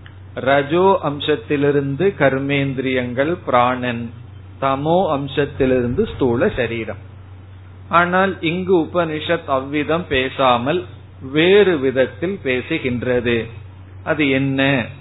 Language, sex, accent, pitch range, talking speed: Tamil, male, native, 95-145 Hz, 60 wpm